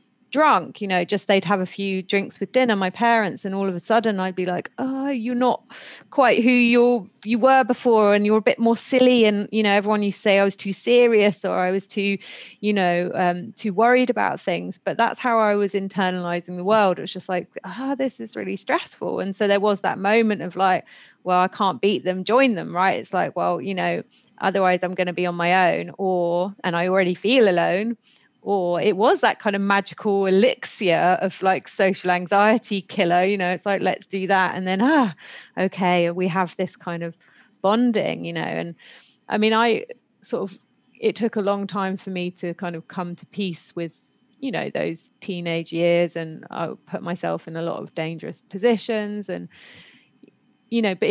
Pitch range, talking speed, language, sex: 180-220 Hz, 210 wpm, English, female